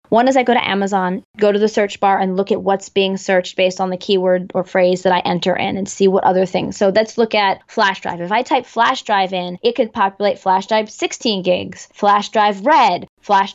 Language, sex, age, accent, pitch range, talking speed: English, female, 20-39, American, 190-220 Hz, 245 wpm